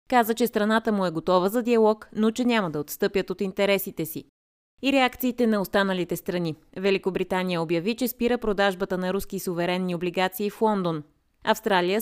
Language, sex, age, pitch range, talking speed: Bulgarian, female, 20-39, 175-225 Hz, 165 wpm